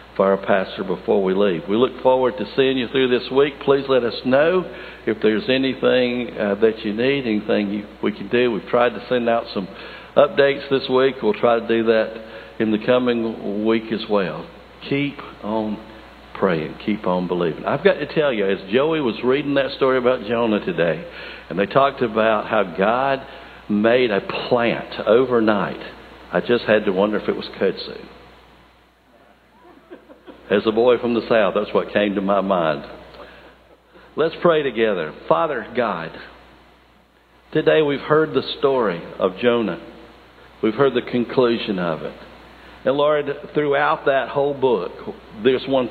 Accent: American